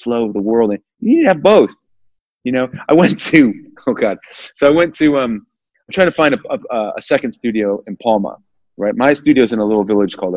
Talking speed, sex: 245 wpm, male